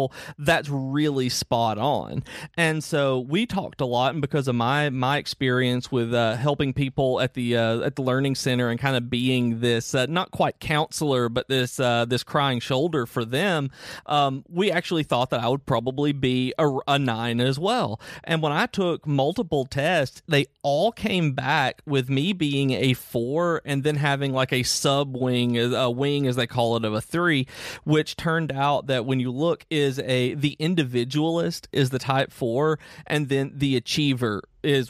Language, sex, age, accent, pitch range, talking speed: English, male, 40-59, American, 125-150 Hz, 190 wpm